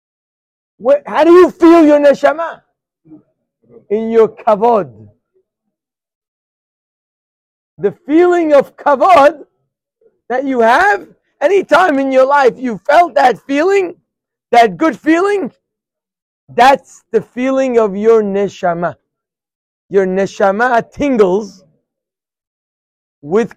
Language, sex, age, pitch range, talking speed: English, male, 60-79, 205-285 Hz, 95 wpm